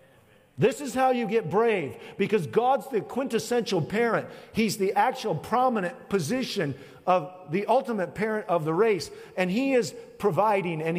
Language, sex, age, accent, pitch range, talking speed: English, male, 50-69, American, 160-225 Hz, 155 wpm